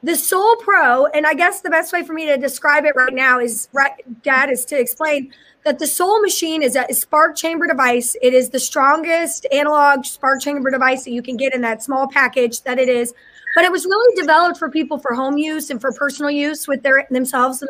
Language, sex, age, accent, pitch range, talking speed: English, female, 20-39, American, 260-315 Hz, 225 wpm